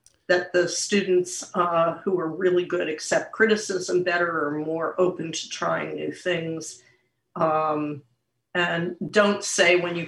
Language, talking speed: English, 145 wpm